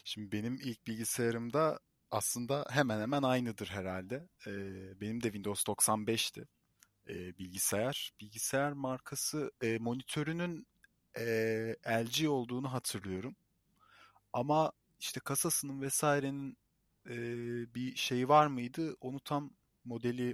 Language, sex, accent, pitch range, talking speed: Turkish, male, native, 105-130 Hz, 110 wpm